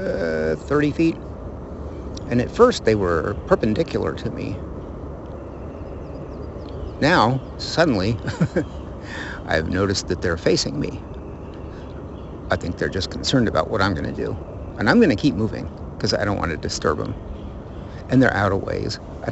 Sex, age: male, 50-69